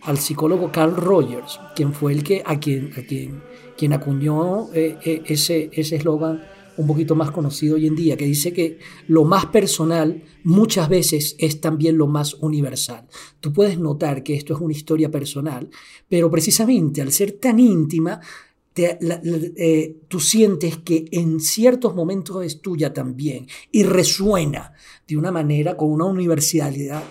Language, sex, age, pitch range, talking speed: Spanish, male, 40-59, 155-185 Hz, 165 wpm